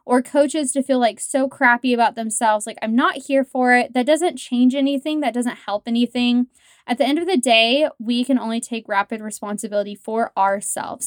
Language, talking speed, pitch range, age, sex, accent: English, 200 wpm, 220-275 Hz, 20-39, female, American